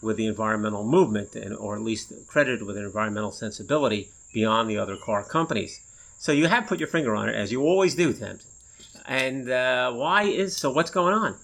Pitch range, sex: 105-145 Hz, male